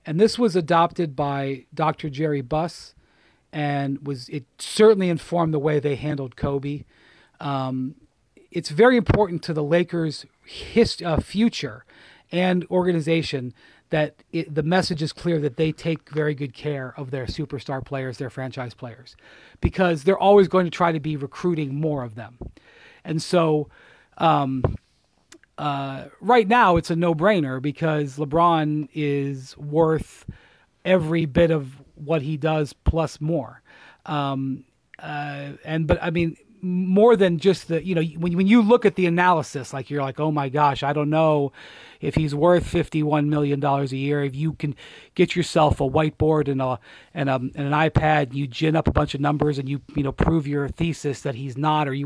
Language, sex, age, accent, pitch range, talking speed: English, male, 40-59, American, 140-170 Hz, 175 wpm